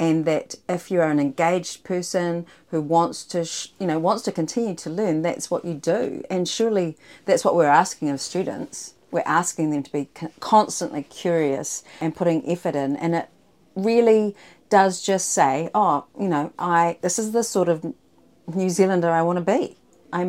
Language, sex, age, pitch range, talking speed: English, female, 40-59, 170-215 Hz, 190 wpm